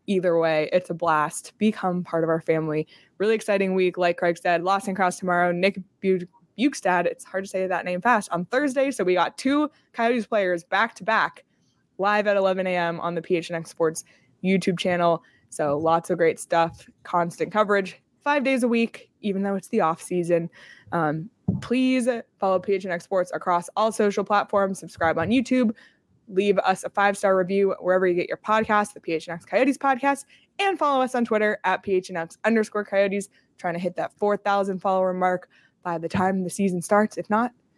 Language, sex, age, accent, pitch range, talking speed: English, female, 20-39, American, 175-230 Hz, 185 wpm